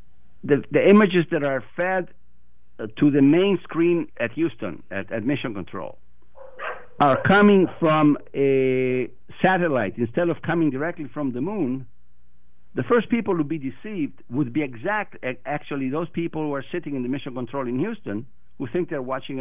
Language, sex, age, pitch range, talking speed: English, male, 60-79, 110-165 Hz, 170 wpm